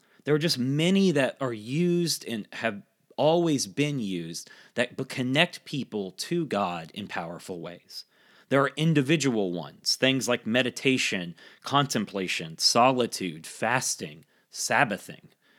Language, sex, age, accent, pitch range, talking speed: English, male, 30-49, American, 110-165 Hz, 120 wpm